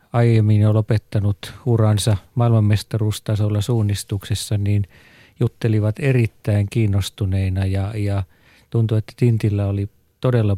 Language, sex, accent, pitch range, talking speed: Finnish, male, native, 100-115 Hz, 95 wpm